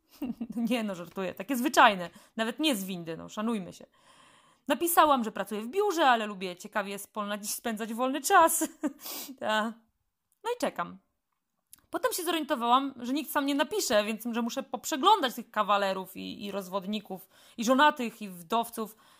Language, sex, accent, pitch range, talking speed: Polish, female, native, 210-285 Hz, 155 wpm